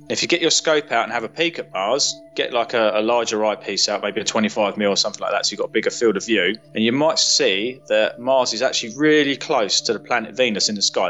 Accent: British